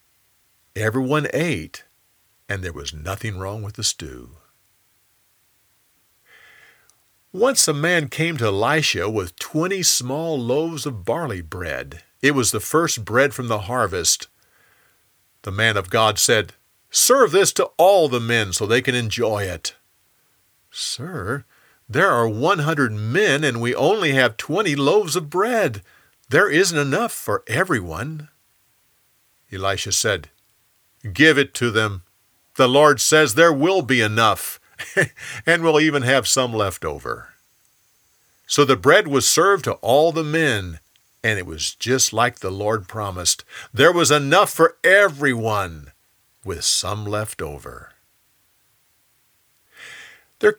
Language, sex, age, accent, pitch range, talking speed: English, male, 50-69, American, 100-145 Hz, 135 wpm